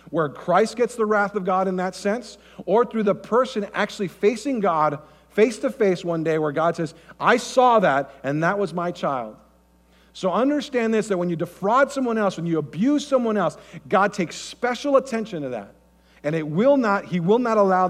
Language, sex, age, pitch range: English, male, 40-59, 155-205 Hz